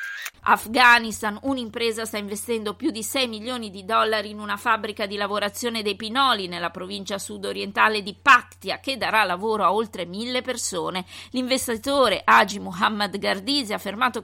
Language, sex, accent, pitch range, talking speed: Italian, female, native, 195-245 Hz, 150 wpm